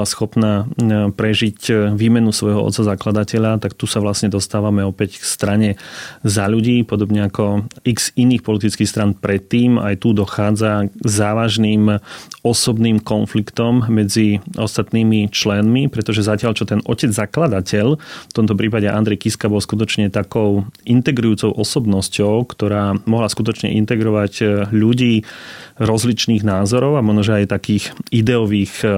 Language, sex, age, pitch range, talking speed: Slovak, male, 30-49, 105-115 Hz, 125 wpm